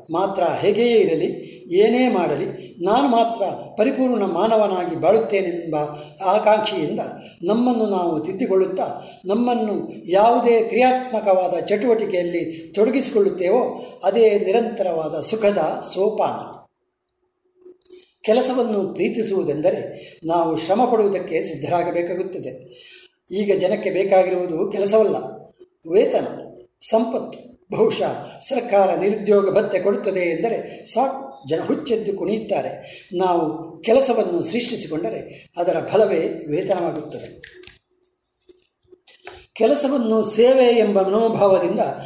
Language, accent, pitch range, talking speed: Kannada, native, 185-250 Hz, 75 wpm